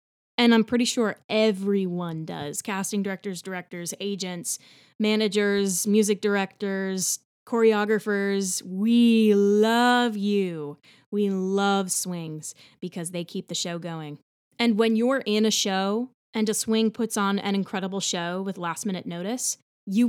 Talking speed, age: 135 wpm, 20-39